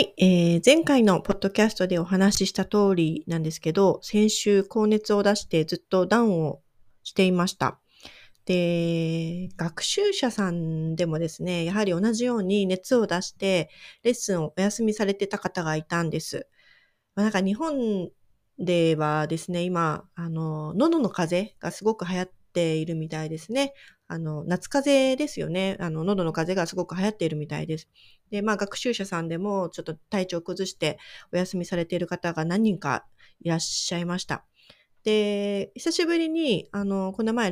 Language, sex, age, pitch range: Japanese, female, 30-49, 170-225 Hz